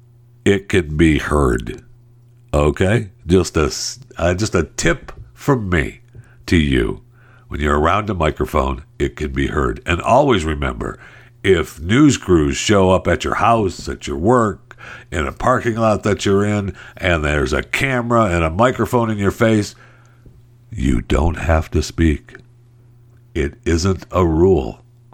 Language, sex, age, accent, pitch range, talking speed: English, male, 60-79, American, 90-120 Hz, 150 wpm